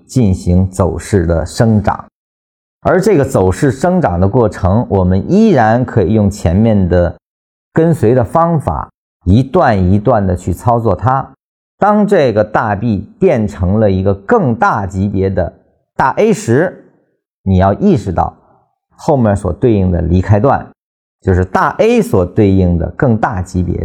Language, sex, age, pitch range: Chinese, male, 50-69, 90-125 Hz